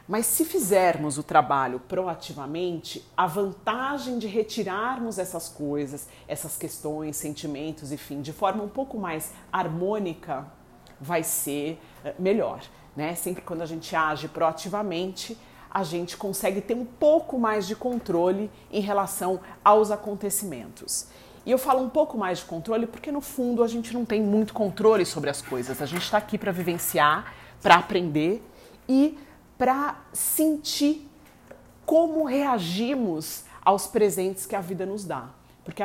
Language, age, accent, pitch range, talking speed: Portuguese, 40-59, Brazilian, 165-220 Hz, 145 wpm